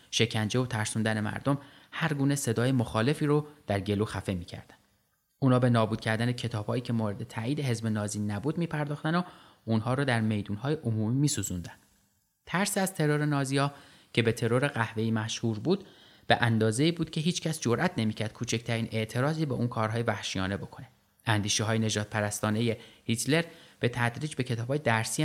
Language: Persian